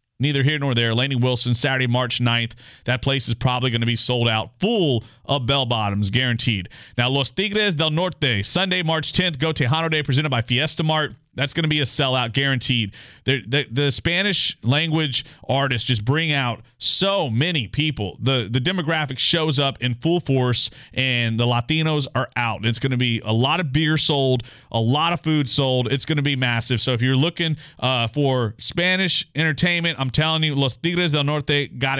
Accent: American